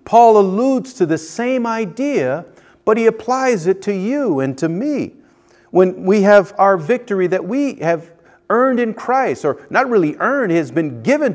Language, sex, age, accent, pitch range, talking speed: English, male, 40-59, American, 180-260 Hz, 180 wpm